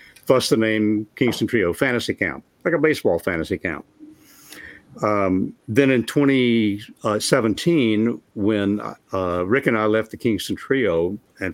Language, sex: English, male